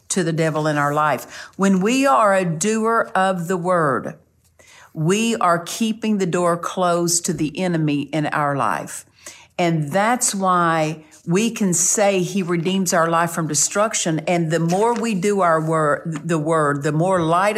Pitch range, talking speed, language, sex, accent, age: 150-185 Hz, 170 wpm, English, female, American, 50-69